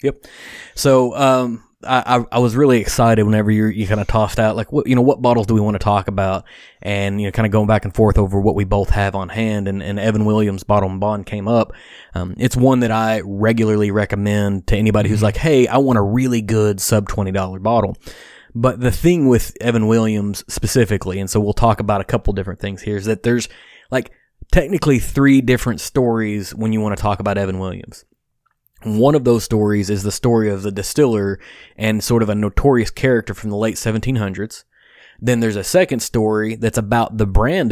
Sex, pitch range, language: male, 105-120 Hz, English